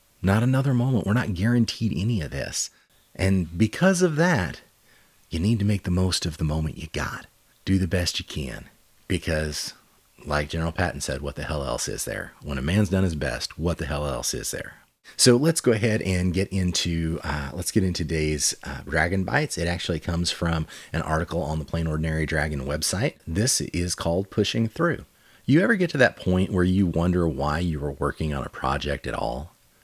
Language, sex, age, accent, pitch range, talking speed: English, male, 30-49, American, 80-105 Hz, 205 wpm